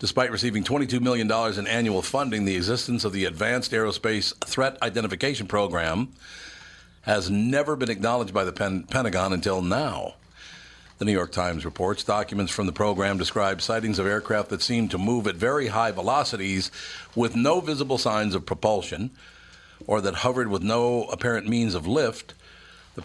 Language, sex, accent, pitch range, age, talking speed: English, male, American, 95-115 Hz, 50-69, 160 wpm